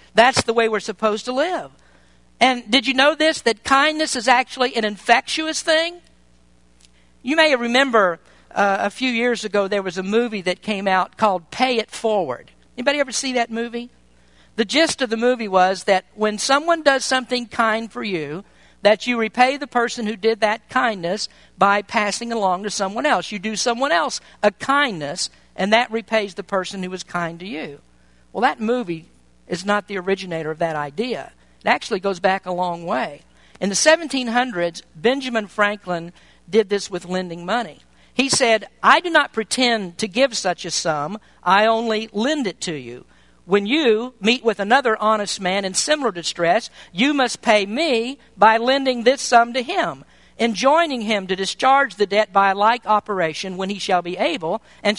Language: English